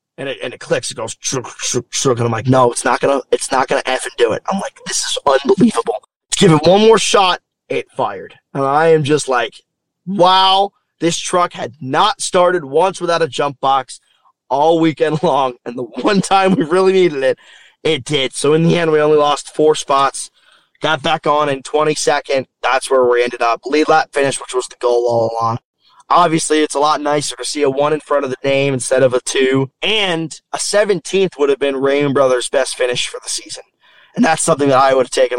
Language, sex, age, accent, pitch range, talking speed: English, male, 20-39, American, 130-170 Hz, 215 wpm